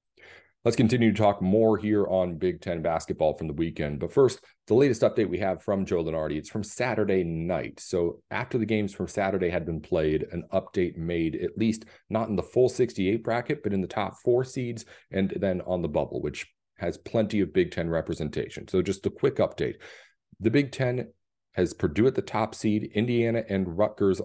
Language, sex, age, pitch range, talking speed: English, male, 40-59, 90-115 Hz, 205 wpm